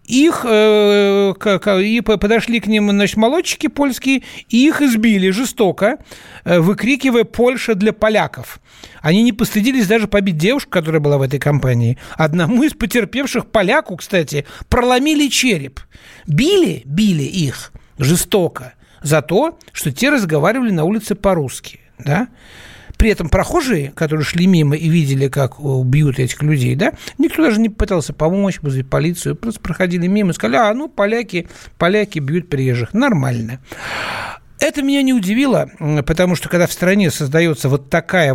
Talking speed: 140 wpm